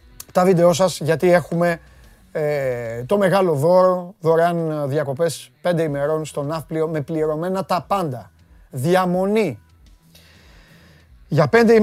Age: 30-49